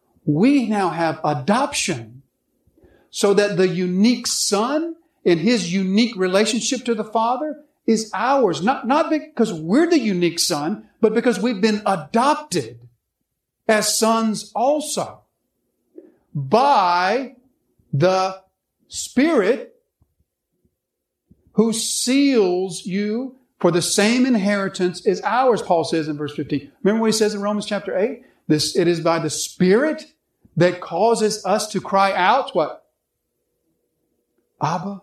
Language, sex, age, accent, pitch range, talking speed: English, male, 50-69, American, 150-235 Hz, 125 wpm